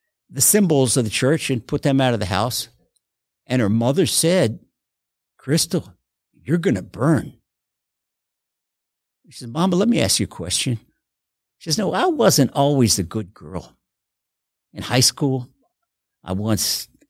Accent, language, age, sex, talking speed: American, English, 60-79, male, 160 wpm